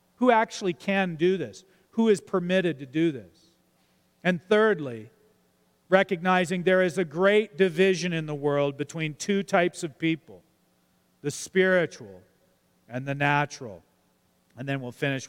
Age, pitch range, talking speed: 40-59, 140-195 Hz, 140 wpm